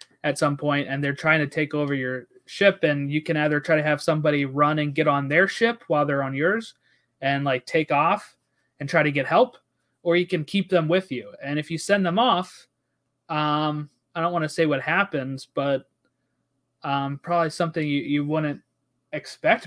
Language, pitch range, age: English, 140-180 Hz, 20-39